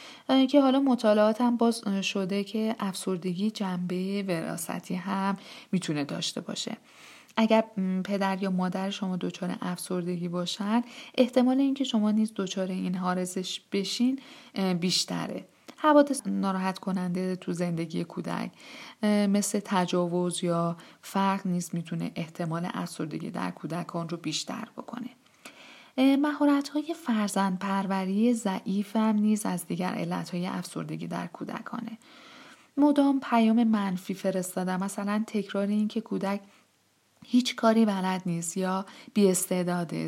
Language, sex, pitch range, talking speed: Persian, female, 180-230 Hz, 120 wpm